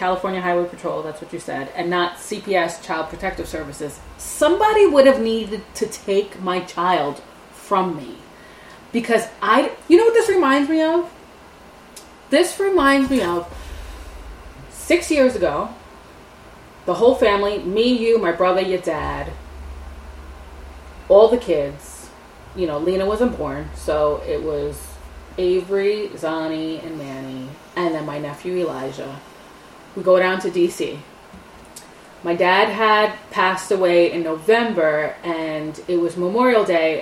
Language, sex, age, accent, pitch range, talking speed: English, female, 30-49, American, 155-205 Hz, 140 wpm